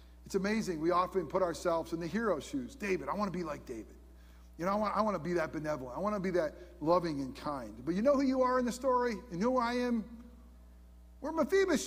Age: 50-69